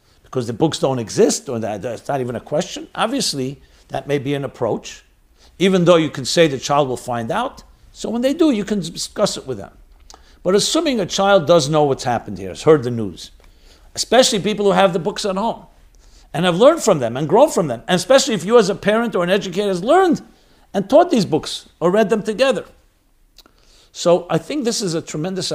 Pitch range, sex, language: 125-190 Hz, male, English